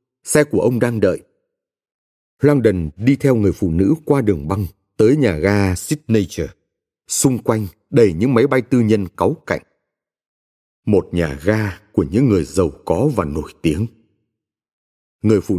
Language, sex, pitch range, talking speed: Vietnamese, male, 100-140 Hz, 160 wpm